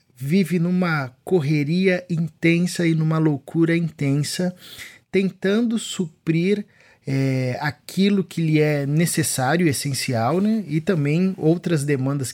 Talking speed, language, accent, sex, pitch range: 100 wpm, Portuguese, Brazilian, male, 130-160 Hz